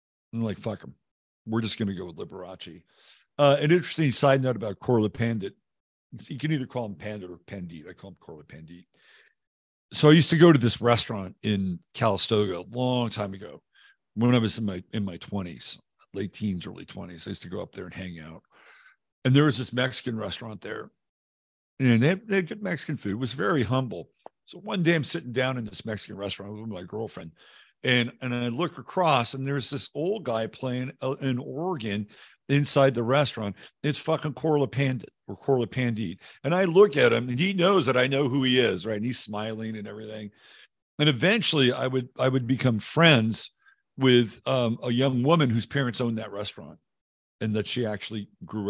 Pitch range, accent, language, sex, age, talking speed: 105-140 Hz, American, English, male, 50-69, 200 wpm